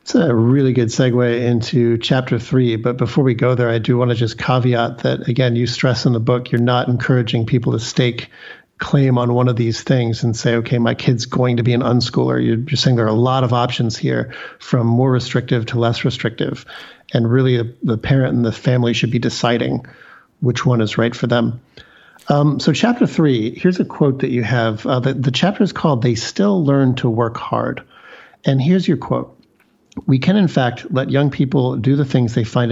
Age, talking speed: 50-69, 215 wpm